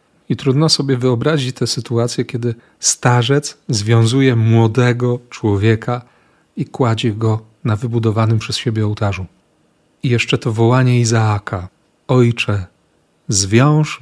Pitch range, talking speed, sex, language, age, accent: 115-140 Hz, 110 wpm, male, Polish, 40-59, native